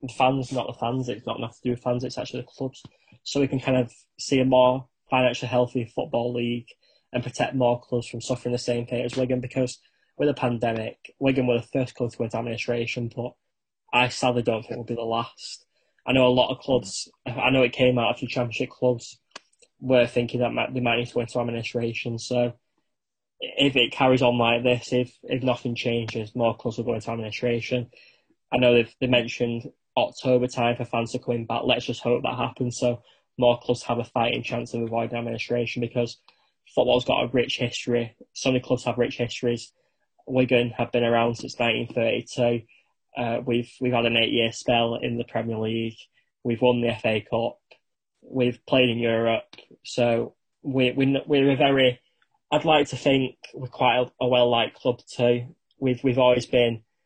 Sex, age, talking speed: male, 10-29, 200 wpm